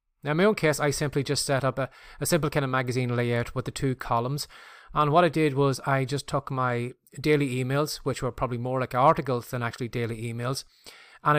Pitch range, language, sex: 125-145 Hz, English, male